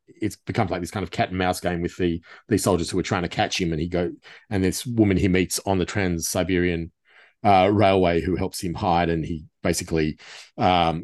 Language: English